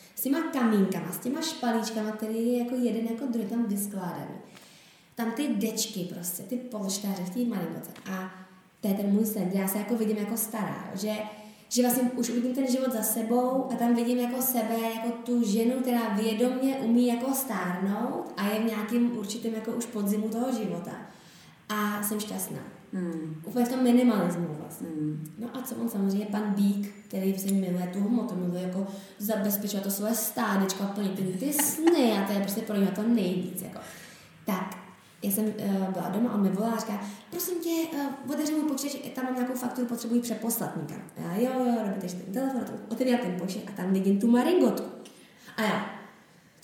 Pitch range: 200-245 Hz